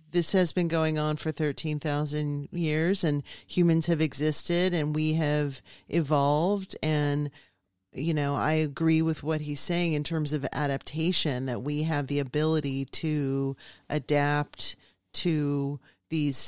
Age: 40-59